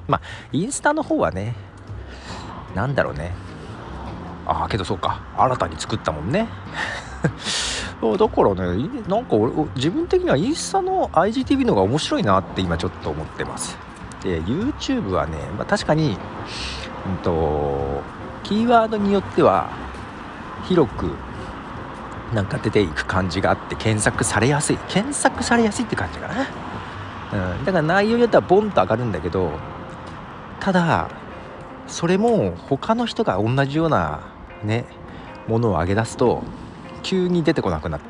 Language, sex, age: Japanese, male, 40-59